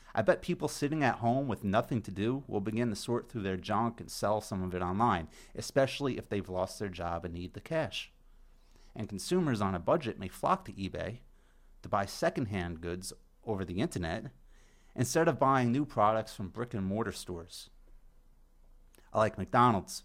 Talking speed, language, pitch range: 180 wpm, English, 90-120 Hz